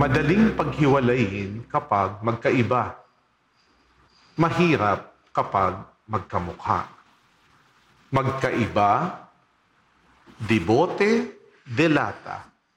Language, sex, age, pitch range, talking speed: English, male, 50-69, 115-175 Hz, 45 wpm